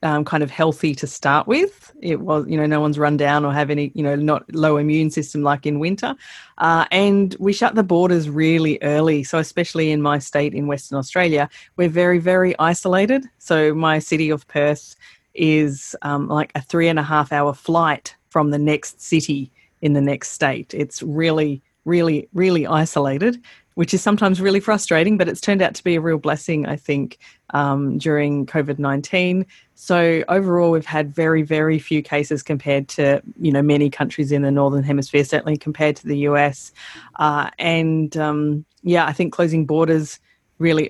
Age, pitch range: 30-49, 145-165 Hz